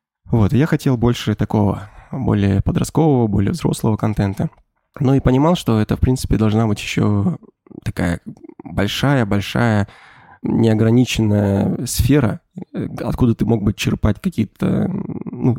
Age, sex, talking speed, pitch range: 20-39, male, 120 wpm, 105-125 Hz